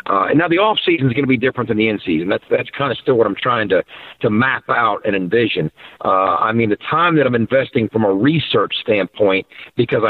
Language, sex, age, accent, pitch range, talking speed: English, male, 50-69, American, 110-140 Hz, 240 wpm